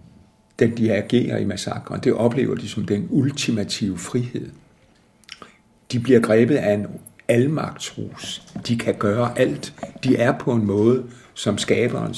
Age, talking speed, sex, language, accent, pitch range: 60-79, 145 wpm, male, Danish, native, 105-120 Hz